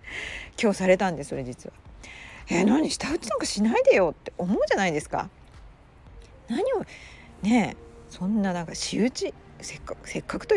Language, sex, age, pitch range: Japanese, female, 40-59, 155-240 Hz